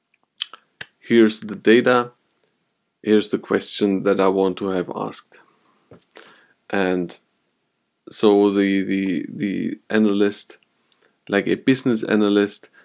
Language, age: English, 20-39